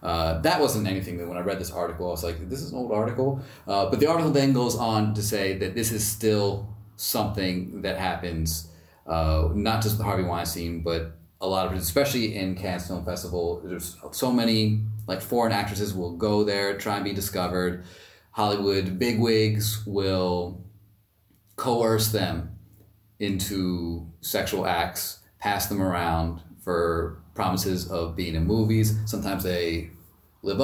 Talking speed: 165 wpm